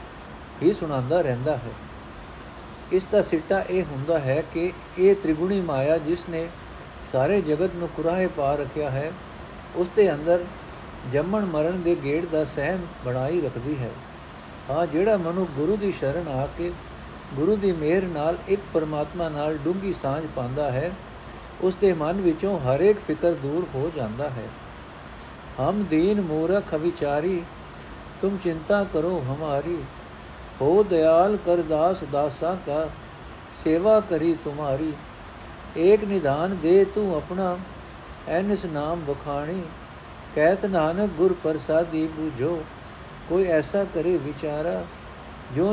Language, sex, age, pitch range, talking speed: Punjabi, male, 60-79, 145-185 Hz, 135 wpm